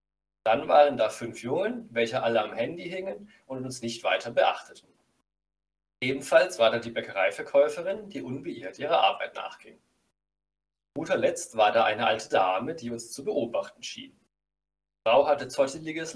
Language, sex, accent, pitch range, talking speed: German, male, German, 110-145 Hz, 150 wpm